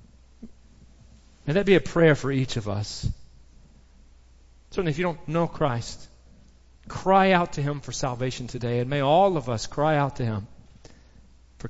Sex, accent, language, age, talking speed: male, American, English, 40-59, 165 wpm